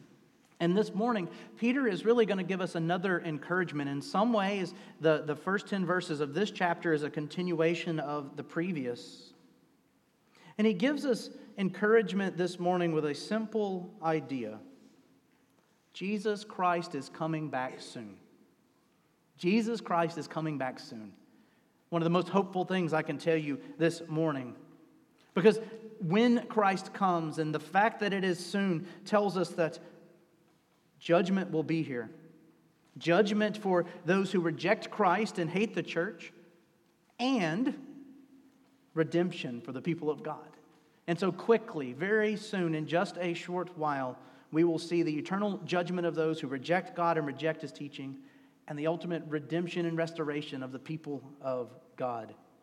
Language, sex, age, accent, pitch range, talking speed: English, male, 40-59, American, 155-195 Hz, 155 wpm